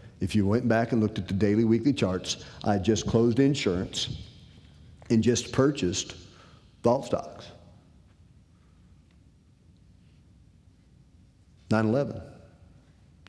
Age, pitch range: 50-69, 95-150 Hz